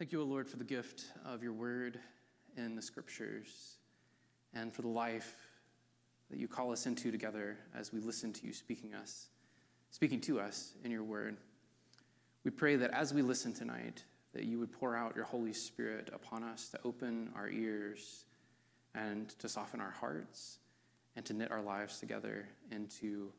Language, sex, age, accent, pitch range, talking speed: English, male, 20-39, American, 110-125 Hz, 175 wpm